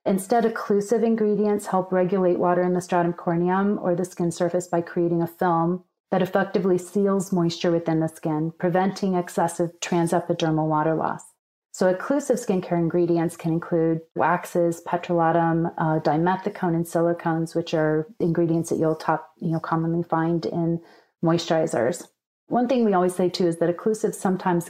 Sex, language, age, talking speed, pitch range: female, English, 30-49, 150 wpm, 165-180 Hz